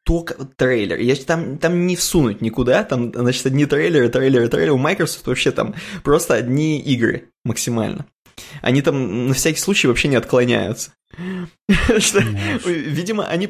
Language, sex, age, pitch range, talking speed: Russian, male, 20-39, 125-165 Hz, 135 wpm